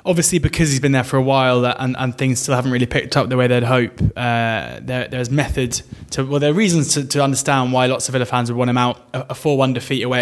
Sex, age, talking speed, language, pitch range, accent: male, 20-39, 265 wpm, English, 130-140 Hz, British